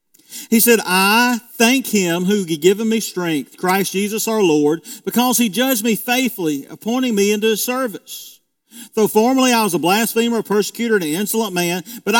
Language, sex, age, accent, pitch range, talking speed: English, male, 40-59, American, 160-220 Hz, 180 wpm